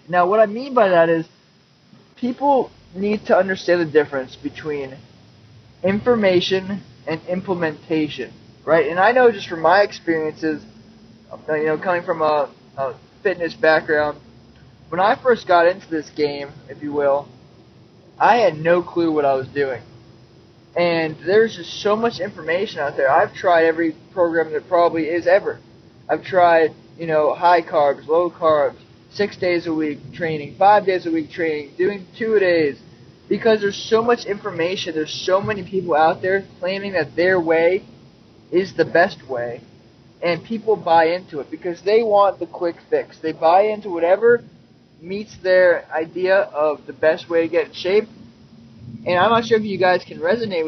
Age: 20-39